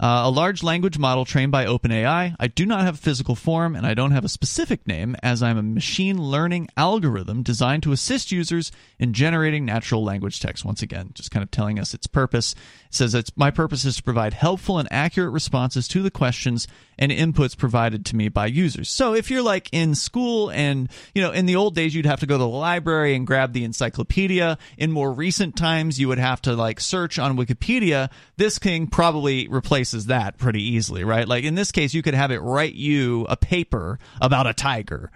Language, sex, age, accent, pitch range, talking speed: English, male, 40-59, American, 120-165 Hz, 220 wpm